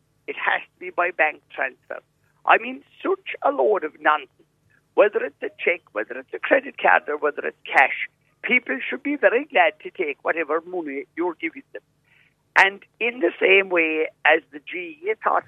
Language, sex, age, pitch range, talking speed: English, male, 60-79, 160-260 Hz, 185 wpm